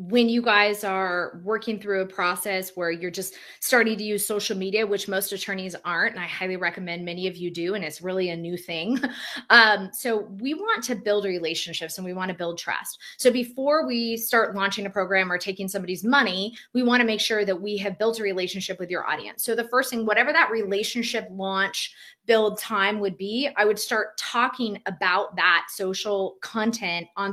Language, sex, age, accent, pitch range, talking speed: English, female, 20-39, American, 185-230 Hz, 200 wpm